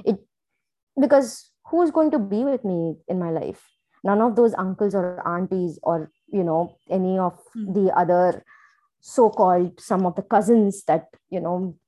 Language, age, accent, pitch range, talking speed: English, 20-39, Indian, 180-235 Hz, 165 wpm